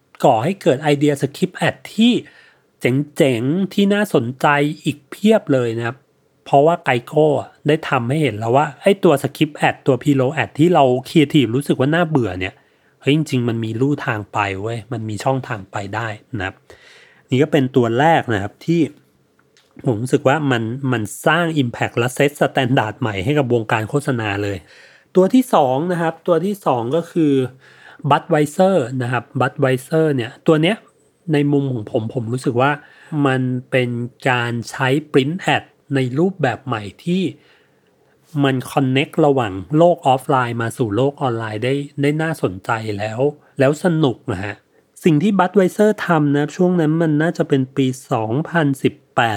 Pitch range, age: 120-155 Hz, 30-49